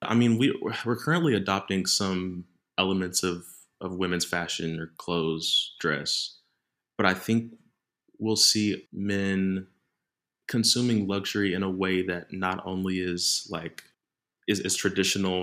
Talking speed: 130 wpm